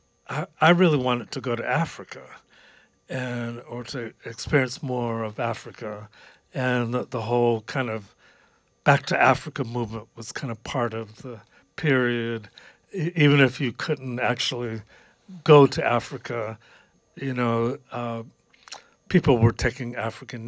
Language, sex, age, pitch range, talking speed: English, male, 60-79, 115-140 Hz, 140 wpm